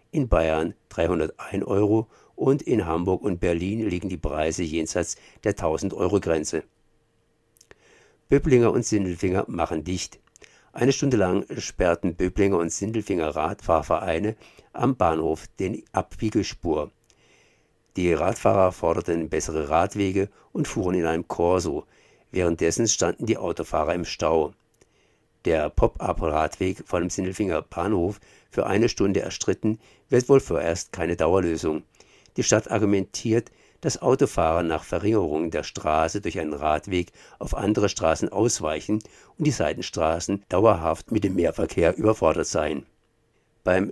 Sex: male